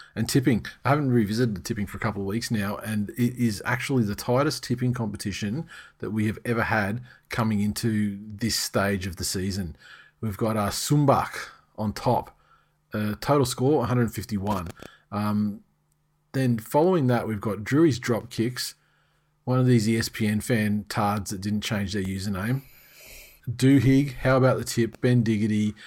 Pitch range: 105-125 Hz